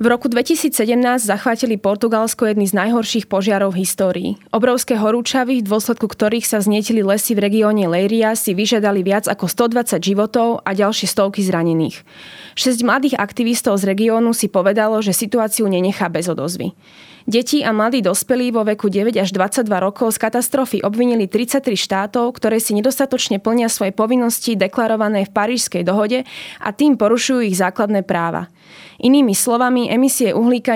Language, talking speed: Slovak, 155 wpm